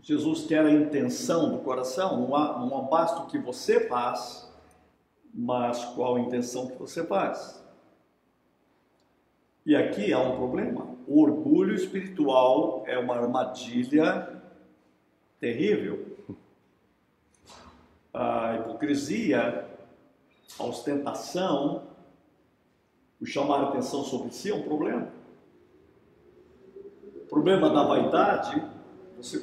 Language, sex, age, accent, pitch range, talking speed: Portuguese, male, 60-79, Brazilian, 125-210 Hz, 105 wpm